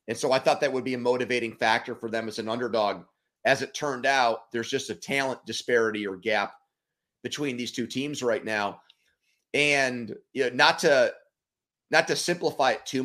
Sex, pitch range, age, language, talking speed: male, 120-140 Hz, 30-49, English, 195 wpm